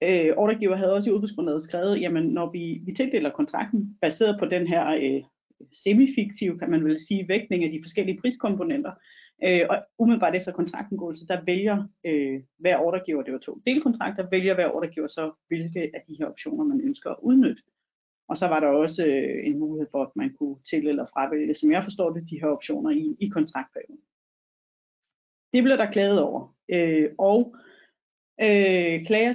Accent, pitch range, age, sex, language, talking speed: native, 170-240 Hz, 30-49, female, Danish, 180 wpm